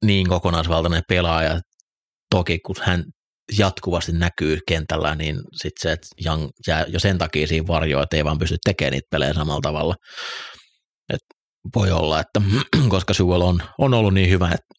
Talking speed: 160 wpm